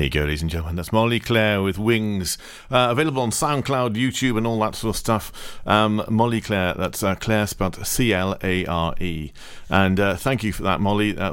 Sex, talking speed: male, 200 wpm